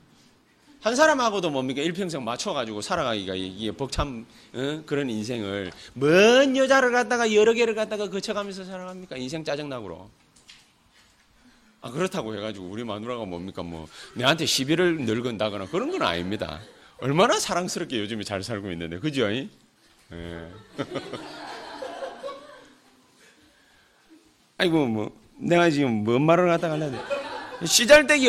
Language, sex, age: Korean, male, 30-49